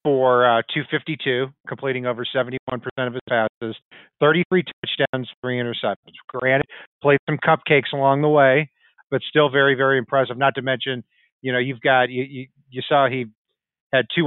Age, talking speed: 40-59, 160 wpm